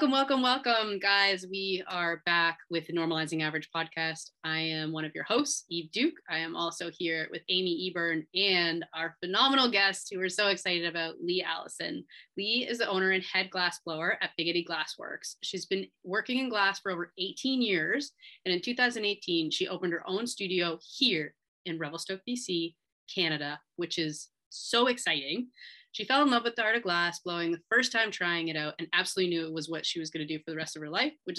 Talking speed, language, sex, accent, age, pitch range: 210 wpm, English, female, American, 30-49, 165-210 Hz